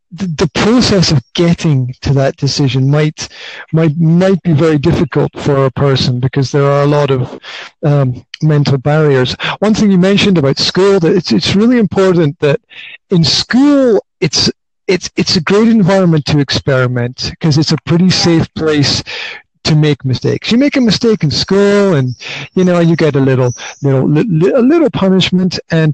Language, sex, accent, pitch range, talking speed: English, male, American, 140-190 Hz, 175 wpm